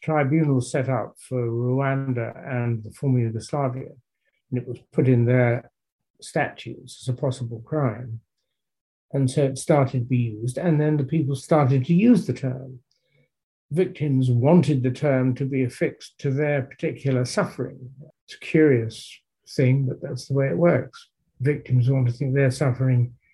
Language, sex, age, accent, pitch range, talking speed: English, male, 60-79, British, 125-150 Hz, 160 wpm